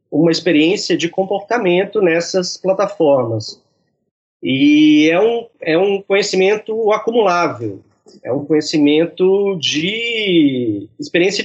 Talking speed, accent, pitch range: 95 wpm, Brazilian, 130-180 Hz